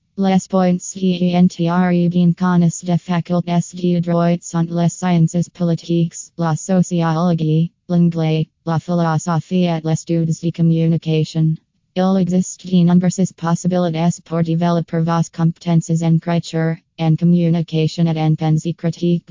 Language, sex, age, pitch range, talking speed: English, female, 20-39, 165-175 Hz, 120 wpm